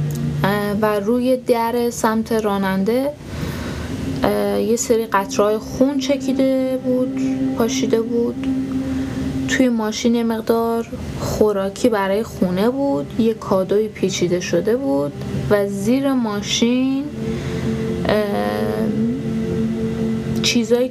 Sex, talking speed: female, 85 wpm